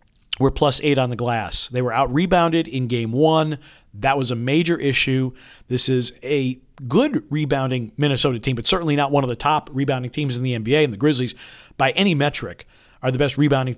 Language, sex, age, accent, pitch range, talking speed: English, male, 50-69, American, 120-150 Hz, 200 wpm